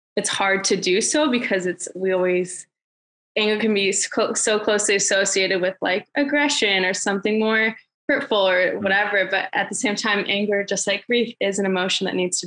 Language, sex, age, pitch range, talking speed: English, female, 20-39, 185-215 Hz, 190 wpm